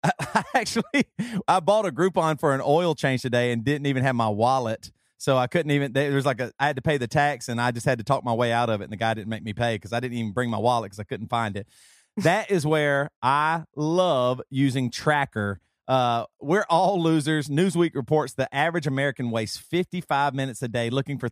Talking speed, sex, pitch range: 235 wpm, male, 125-175 Hz